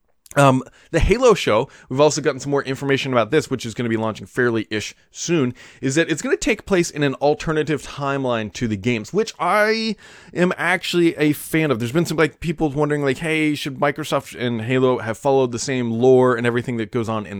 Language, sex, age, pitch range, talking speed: English, male, 20-39, 115-150 Hz, 220 wpm